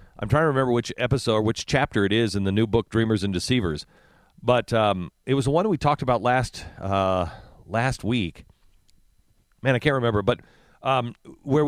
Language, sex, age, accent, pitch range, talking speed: English, male, 40-59, American, 105-140 Hz, 195 wpm